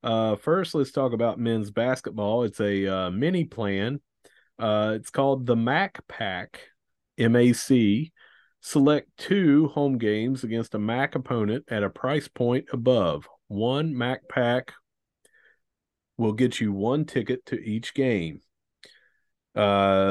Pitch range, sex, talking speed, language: 100-135 Hz, male, 130 wpm, English